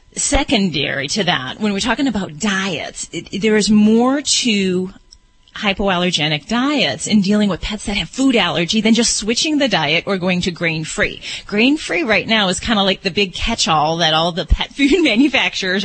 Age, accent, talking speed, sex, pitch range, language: 30-49, American, 180 wpm, female, 175-215 Hz, English